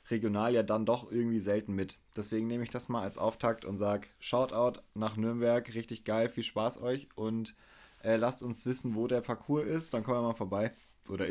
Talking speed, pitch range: 205 wpm, 110-130 Hz